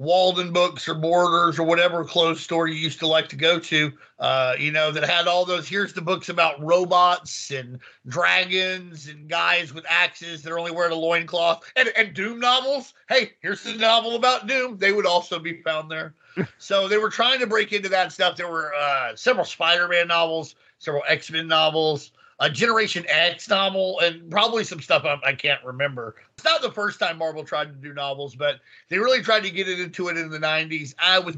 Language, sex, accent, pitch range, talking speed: English, male, American, 150-190 Hz, 205 wpm